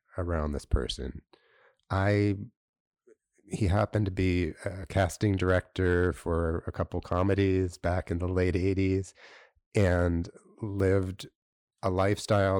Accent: American